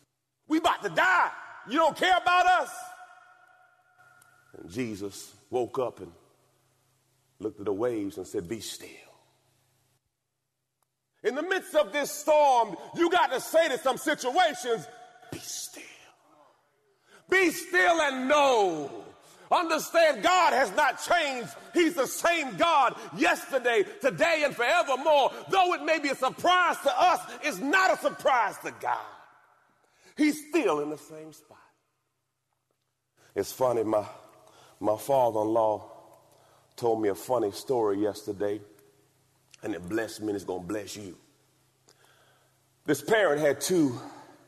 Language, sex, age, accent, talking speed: English, male, 40-59, American, 135 wpm